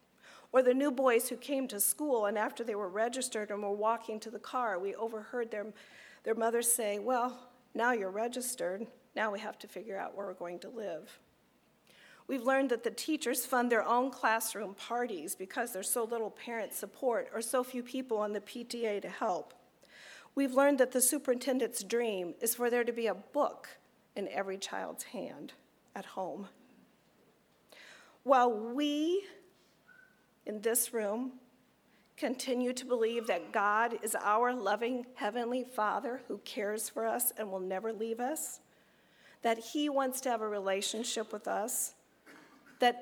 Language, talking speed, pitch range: English, 165 wpm, 215-255 Hz